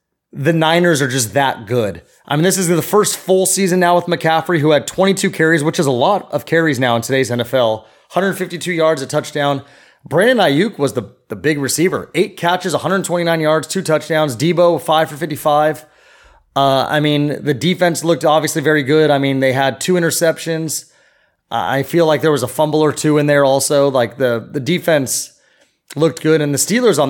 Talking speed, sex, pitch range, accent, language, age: 195 wpm, male, 135-165 Hz, American, English, 30-49